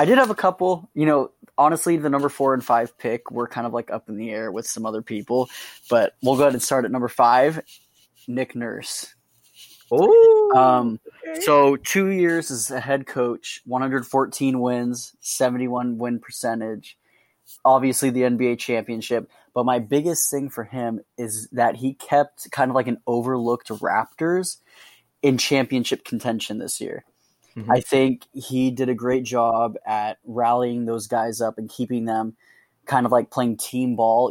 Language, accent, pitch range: English, American, 115-135 Hz